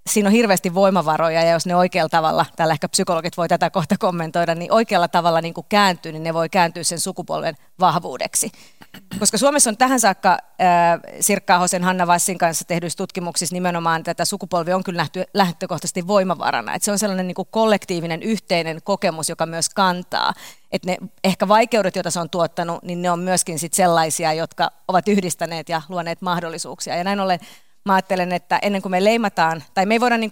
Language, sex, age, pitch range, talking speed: Finnish, female, 30-49, 170-200 Hz, 190 wpm